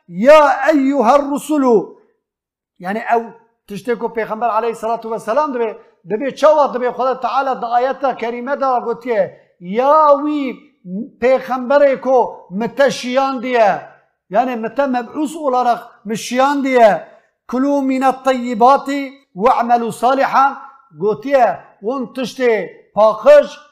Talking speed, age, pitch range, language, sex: 105 wpm, 50-69, 230-285 Hz, Turkish, male